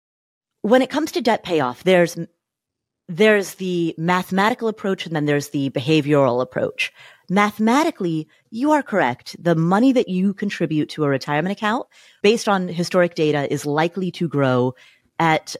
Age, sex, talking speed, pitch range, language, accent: 30-49, female, 150 wpm, 140-185 Hz, English, American